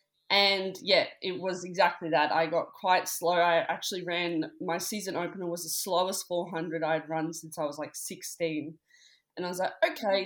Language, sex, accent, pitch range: English, female, Australian, 175-225 Hz